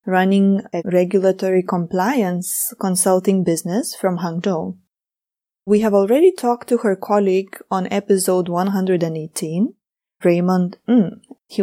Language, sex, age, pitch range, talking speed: English, female, 20-39, 175-210 Hz, 110 wpm